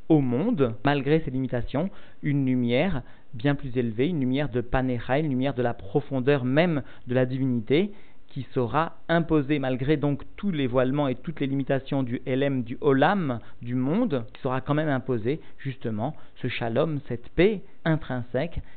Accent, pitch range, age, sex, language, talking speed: French, 120-145 Hz, 50-69, male, French, 165 wpm